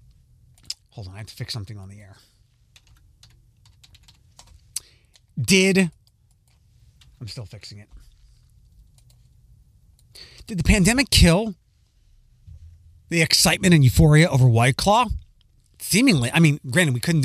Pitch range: 110-160 Hz